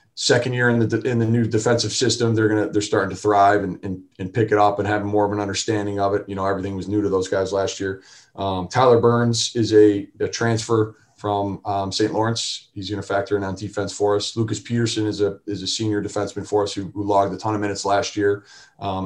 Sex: male